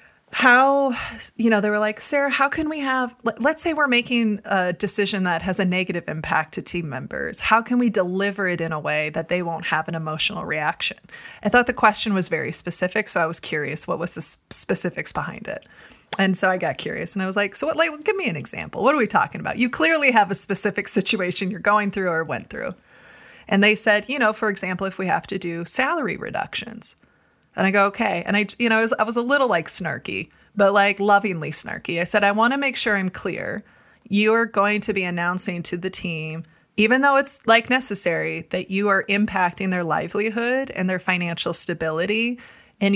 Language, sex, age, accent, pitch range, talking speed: English, female, 20-39, American, 175-225 Hz, 220 wpm